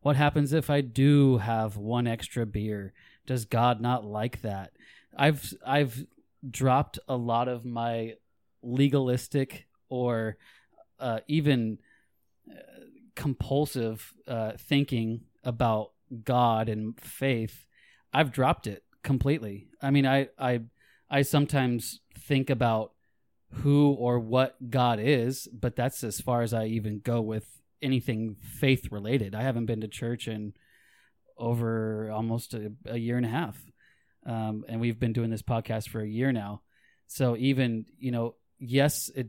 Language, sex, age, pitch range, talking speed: English, male, 30-49, 115-135 Hz, 140 wpm